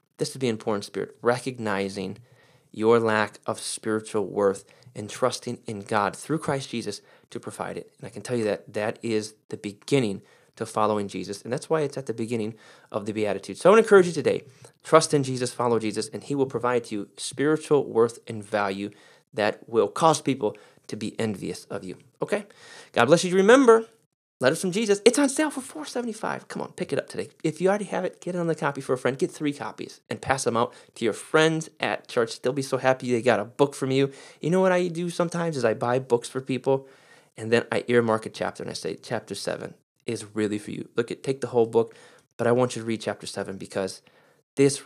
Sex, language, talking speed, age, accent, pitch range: male, English, 230 wpm, 30-49, American, 110-155 Hz